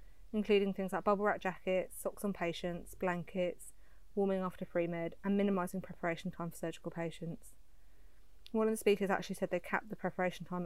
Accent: British